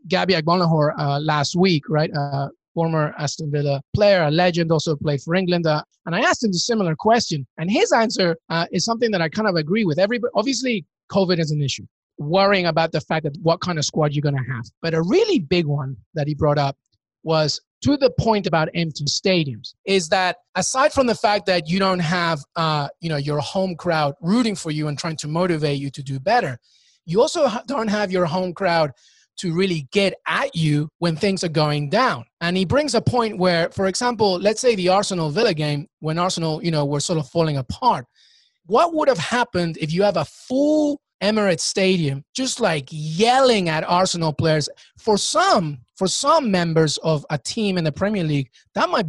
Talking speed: 205 wpm